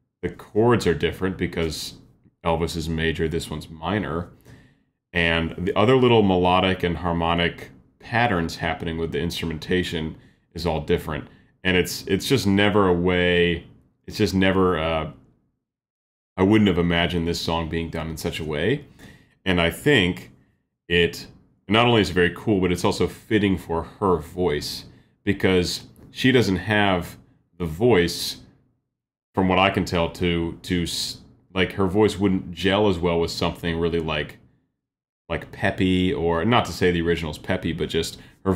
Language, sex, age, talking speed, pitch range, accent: English, male, 30-49, 155 wpm, 80-95 Hz, American